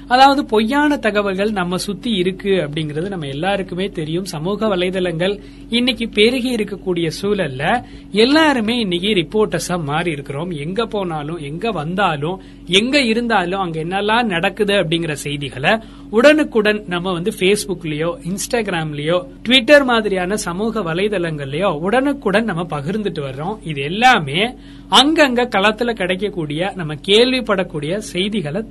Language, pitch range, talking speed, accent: Tamil, 170-230 Hz, 110 wpm, native